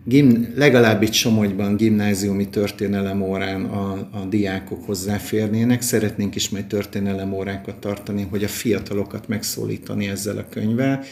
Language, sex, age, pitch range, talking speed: Hungarian, male, 50-69, 100-115 Hz, 120 wpm